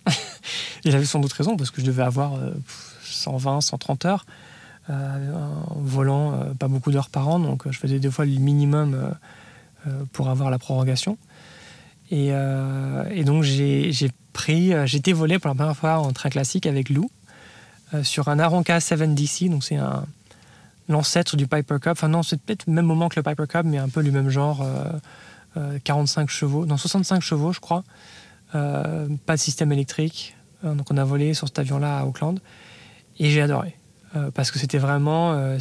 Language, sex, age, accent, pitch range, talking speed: French, male, 20-39, French, 135-155 Hz, 195 wpm